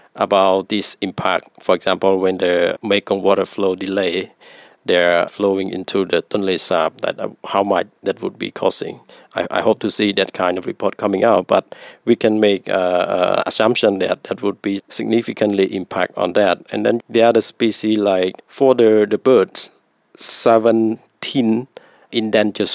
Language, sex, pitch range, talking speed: English, male, 95-115 Hz, 165 wpm